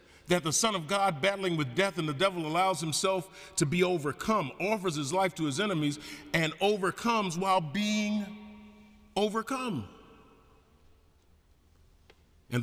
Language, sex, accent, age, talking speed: English, male, American, 40-59, 135 wpm